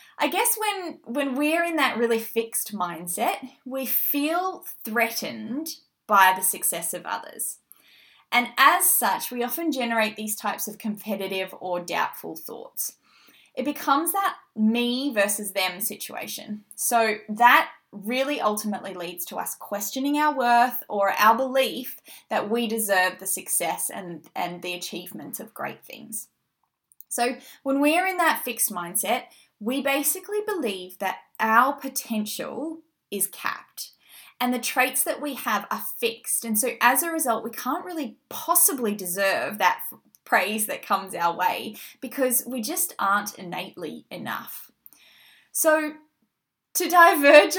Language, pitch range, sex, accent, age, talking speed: English, 210-295 Hz, female, Australian, 20-39, 140 wpm